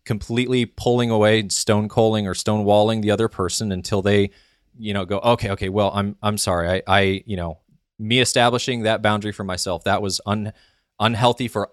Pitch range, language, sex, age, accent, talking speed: 95-115 Hz, English, male, 20-39, American, 180 wpm